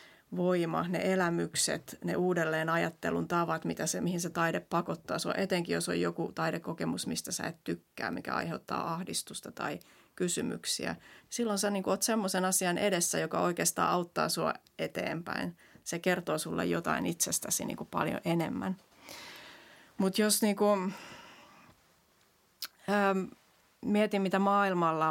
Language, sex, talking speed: Finnish, female, 135 wpm